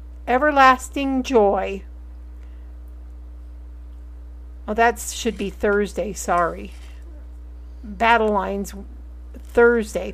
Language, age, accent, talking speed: English, 50-69, American, 65 wpm